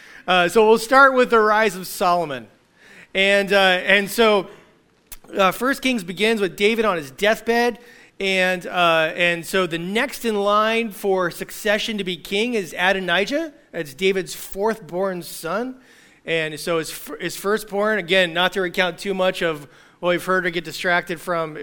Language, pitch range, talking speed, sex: English, 170-210 Hz, 165 wpm, male